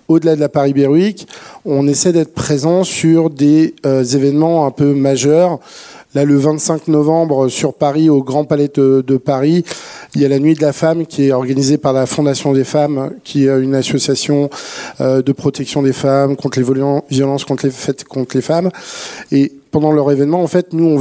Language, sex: French, male